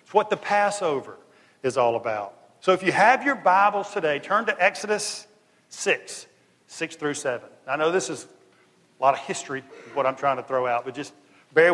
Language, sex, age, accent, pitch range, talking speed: English, male, 50-69, American, 130-200 Hz, 200 wpm